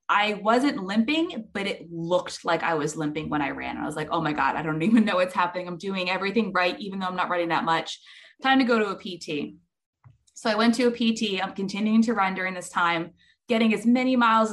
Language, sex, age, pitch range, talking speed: English, female, 20-39, 180-235 Hz, 245 wpm